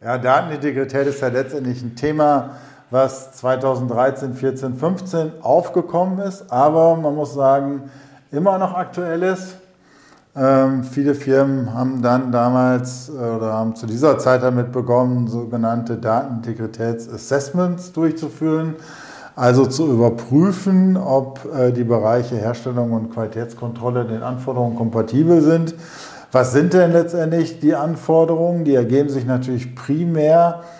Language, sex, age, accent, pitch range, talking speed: German, male, 50-69, German, 125-155 Hz, 120 wpm